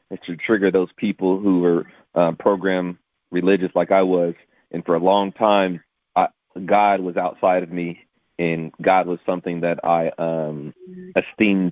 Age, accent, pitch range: 30-49, American, 85-95 Hz